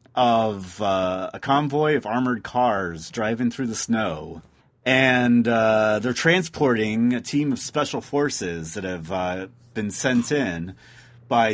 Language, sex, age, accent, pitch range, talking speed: English, male, 30-49, American, 100-130 Hz, 140 wpm